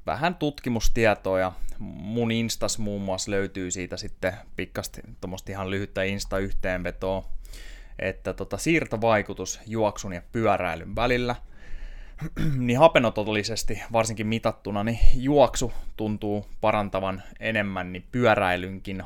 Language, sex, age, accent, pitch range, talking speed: Finnish, male, 20-39, native, 95-115 Hz, 100 wpm